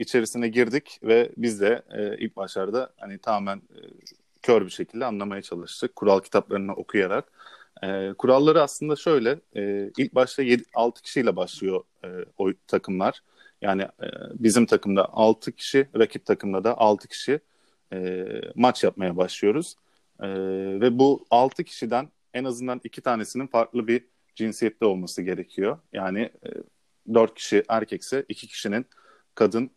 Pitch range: 100-120 Hz